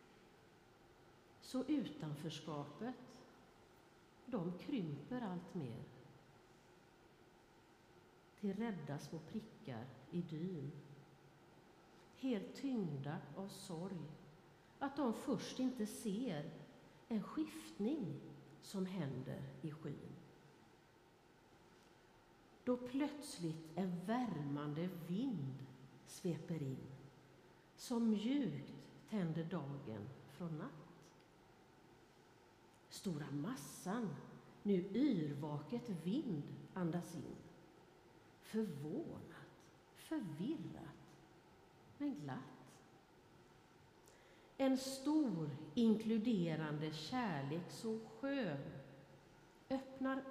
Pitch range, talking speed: 155-235 Hz, 70 wpm